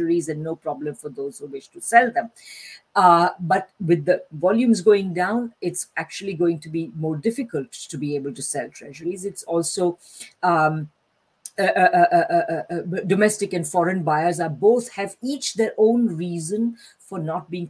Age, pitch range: 50-69, 155-200 Hz